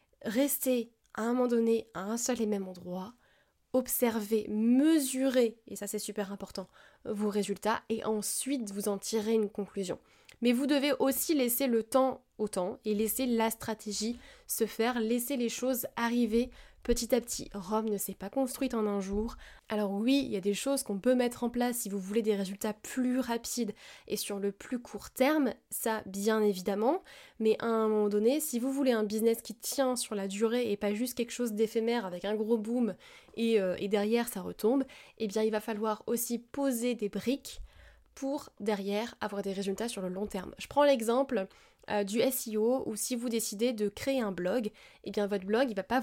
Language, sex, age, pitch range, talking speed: French, female, 20-39, 205-245 Hz, 205 wpm